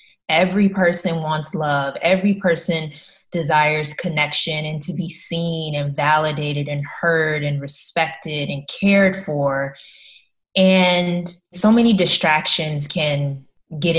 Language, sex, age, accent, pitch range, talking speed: English, female, 20-39, American, 150-185 Hz, 115 wpm